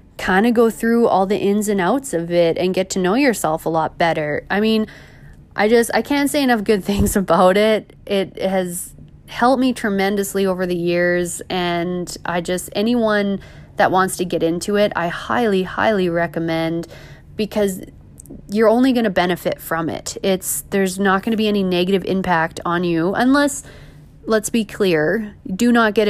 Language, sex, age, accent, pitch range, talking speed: English, female, 20-39, American, 170-210 Hz, 180 wpm